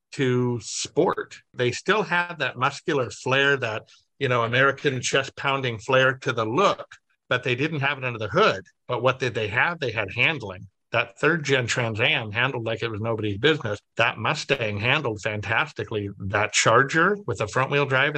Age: 50-69